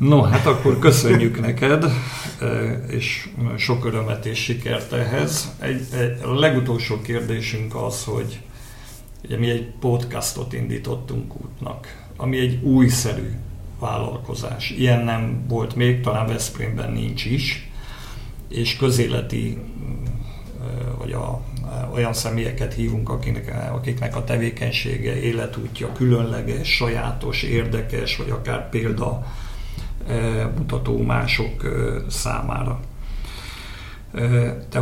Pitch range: 115-125 Hz